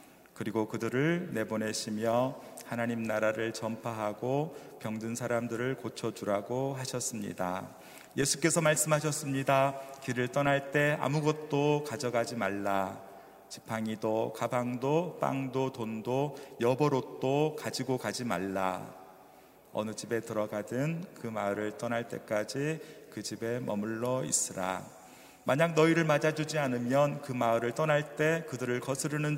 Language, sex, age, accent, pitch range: Korean, male, 40-59, native, 110-140 Hz